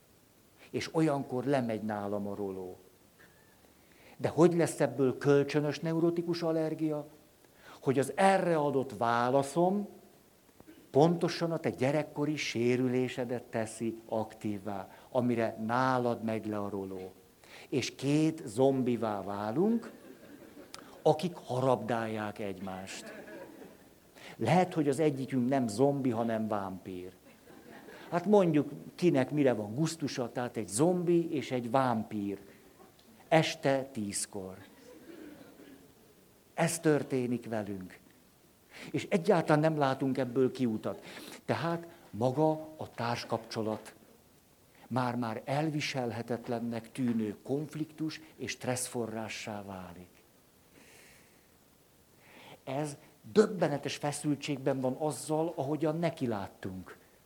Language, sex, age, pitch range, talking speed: Hungarian, male, 60-79, 110-155 Hz, 90 wpm